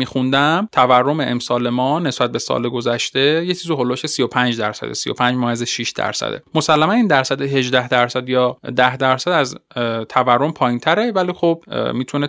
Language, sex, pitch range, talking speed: Persian, male, 120-150 Hz, 165 wpm